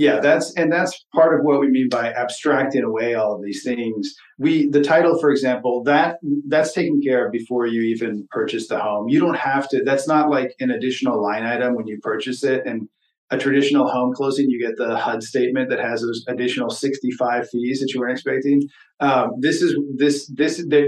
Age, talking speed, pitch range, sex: 40-59, 210 wpm, 115-145 Hz, male